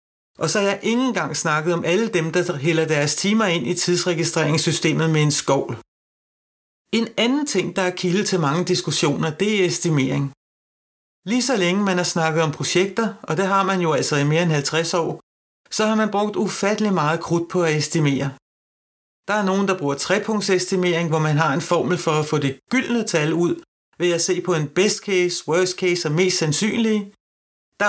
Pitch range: 155-195 Hz